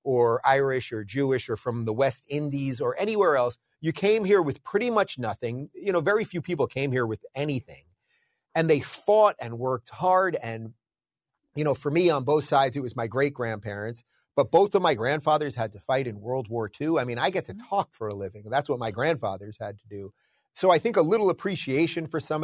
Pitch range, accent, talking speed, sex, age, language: 120-160 Hz, American, 220 wpm, male, 30-49, English